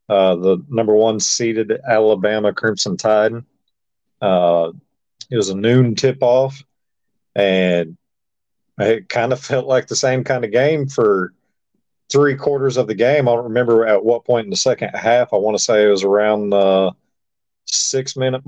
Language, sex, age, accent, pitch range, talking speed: English, male, 40-59, American, 105-130 Hz, 160 wpm